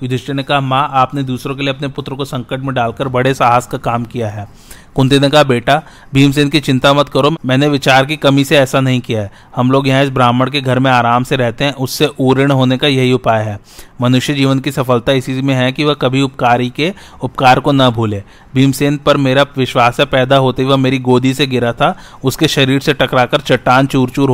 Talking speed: 225 wpm